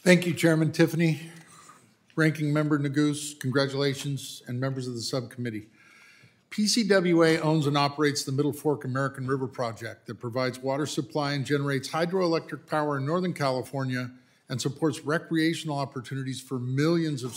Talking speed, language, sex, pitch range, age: 140 wpm, English, male, 130-165 Hz, 50-69